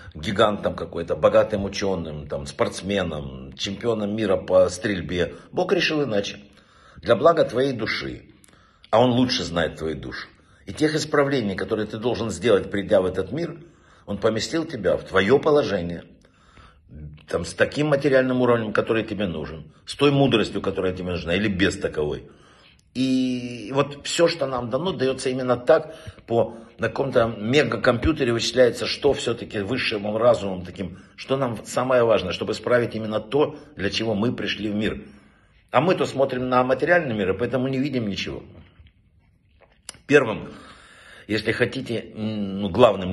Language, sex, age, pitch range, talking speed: Russian, male, 60-79, 95-130 Hz, 145 wpm